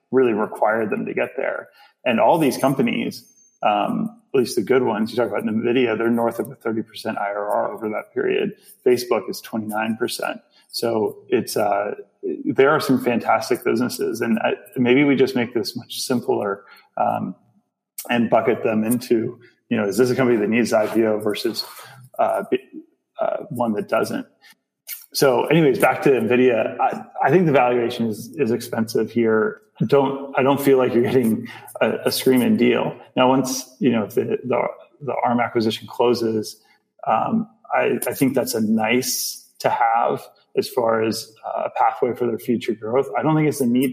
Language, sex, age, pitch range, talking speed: English, male, 30-49, 115-140 Hz, 175 wpm